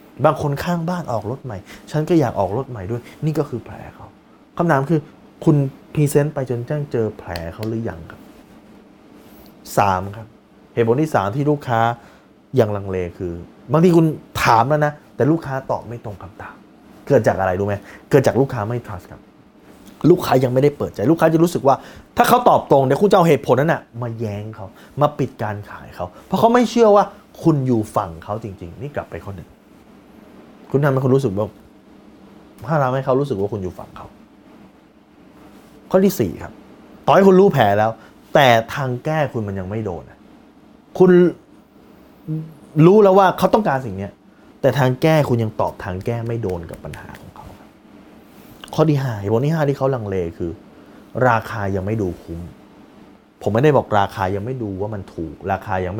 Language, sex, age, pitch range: Thai, male, 20-39, 100-150 Hz